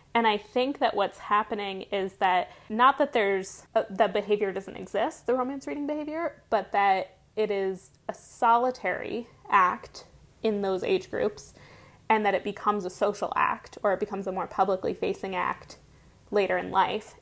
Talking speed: 165 wpm